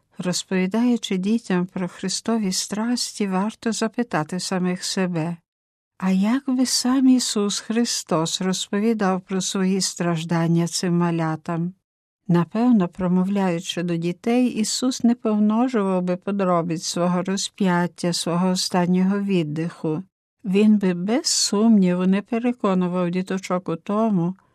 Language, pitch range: Ukrainian, 180-220 Hz